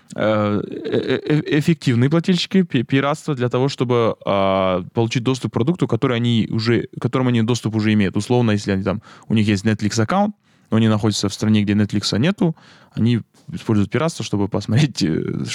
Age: 20-39